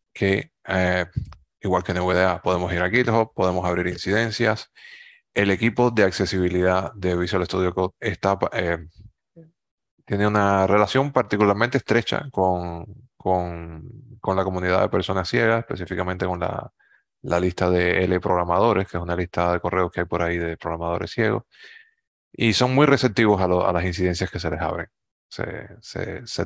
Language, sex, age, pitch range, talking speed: Spanish, male, 30-49, 90-115 Hz, 160 wpm